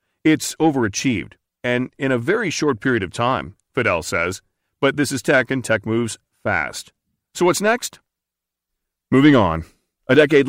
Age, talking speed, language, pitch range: 40-59, 155 wpm, English, 100-130 Hz